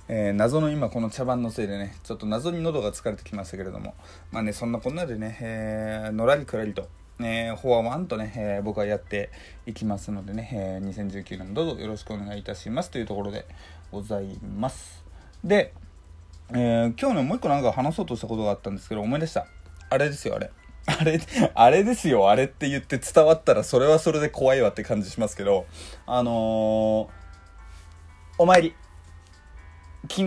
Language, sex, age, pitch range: Japanese, male, 20-39, 85-120 Hz